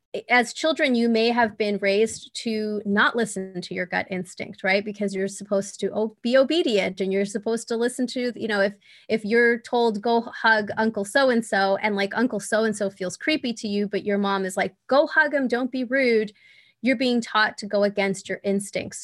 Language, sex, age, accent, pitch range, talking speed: English, female, 20-39, American, 195-235 Hz, 200 wpm